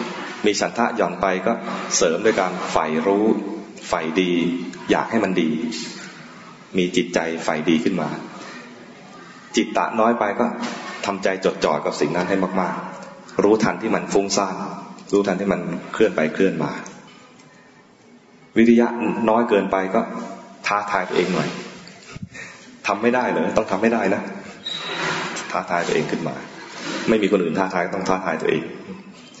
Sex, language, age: male, English, 20-39